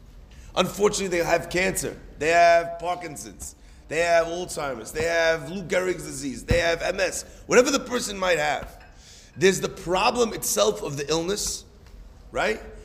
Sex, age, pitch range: male, 40-59, 165-235 Hz